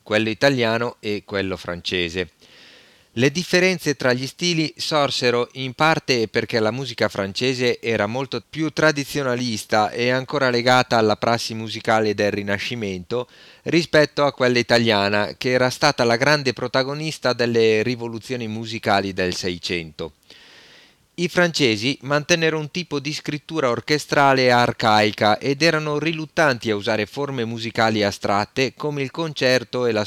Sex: male